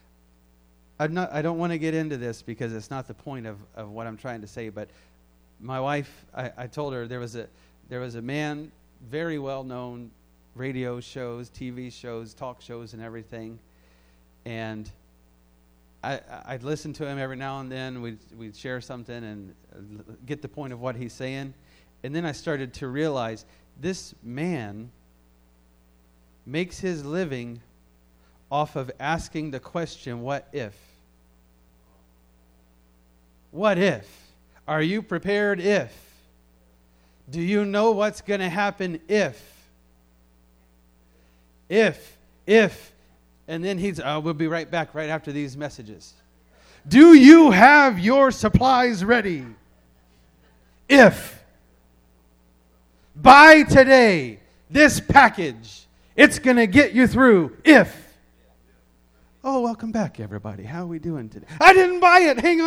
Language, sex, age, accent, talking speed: English, male, 30-49, American, 140 wpm